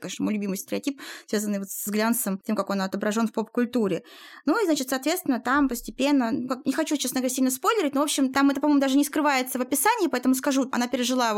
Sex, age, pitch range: female, 20-39, 230-290 Hz